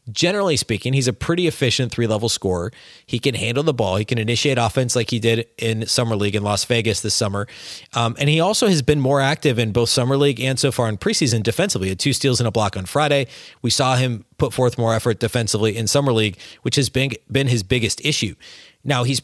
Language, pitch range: English, 110-135 Hz